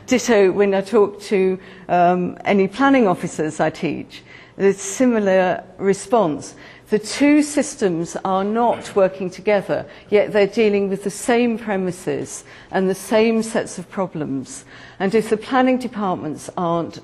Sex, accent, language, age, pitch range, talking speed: female, British, English, 50-69, 175-220 Hz, 145 wpm